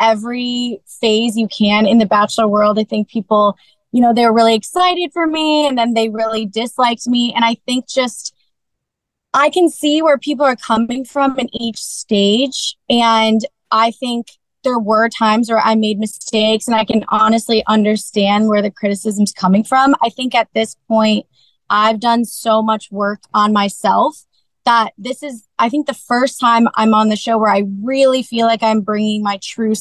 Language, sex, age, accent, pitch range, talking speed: English, female, 20-39, American, 210-245 Hz, 185 wpm